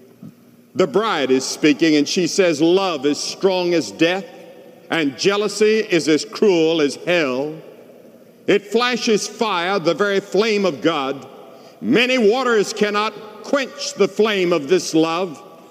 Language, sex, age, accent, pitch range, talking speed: English, male, 60-79, American, 165-250 Hz, 140 wpm